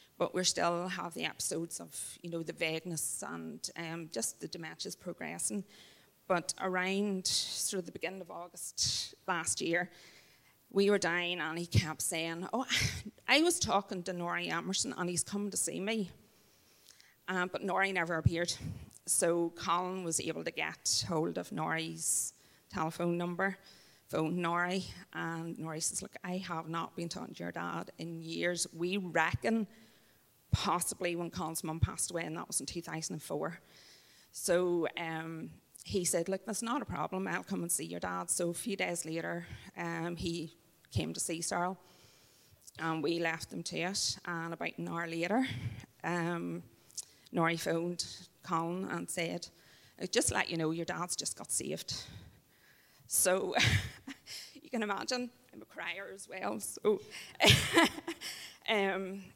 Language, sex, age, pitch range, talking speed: English, female, 30-49, 165-190 Hz, 155 wpm